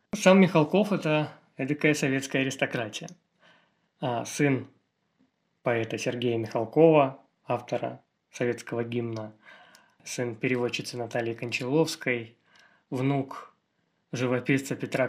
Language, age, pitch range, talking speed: Russian, 20-39, 125-150 Hz, 80 wpm